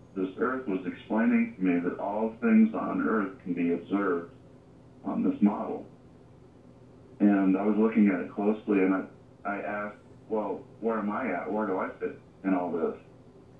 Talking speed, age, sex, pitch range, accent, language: 175 wpm, 40-59, male, 95-130 Hz, American, English